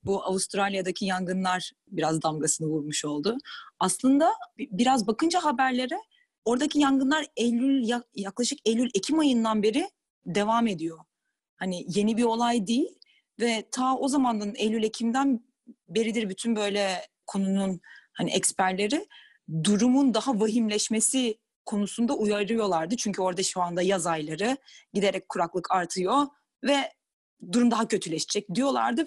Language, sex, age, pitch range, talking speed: Turkish, female, 30-49, 185-250 Hz, 120 wpm